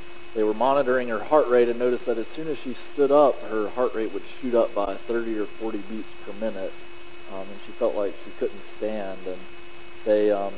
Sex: male